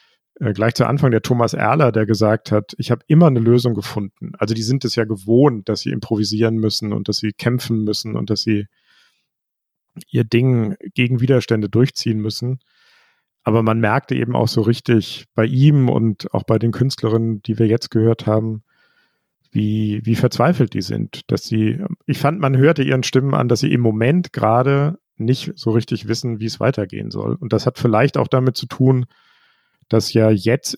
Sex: male